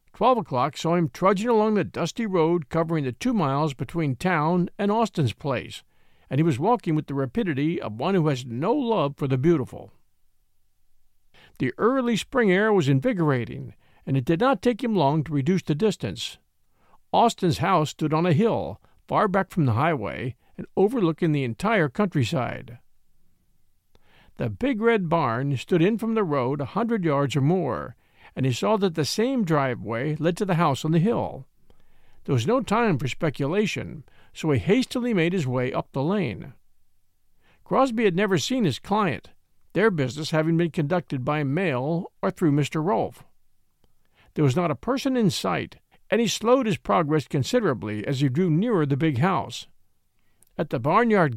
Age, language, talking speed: 50-69, English, 175 wpm